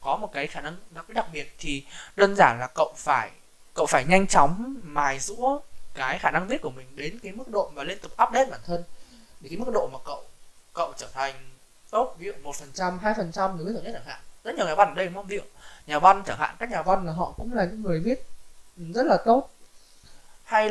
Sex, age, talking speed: male, 20-39, 230 wpm